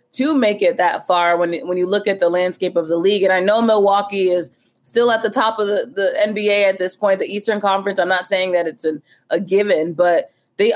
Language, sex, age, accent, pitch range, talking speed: English, female, 20-39, American, 175-215 Hz, 240 wpm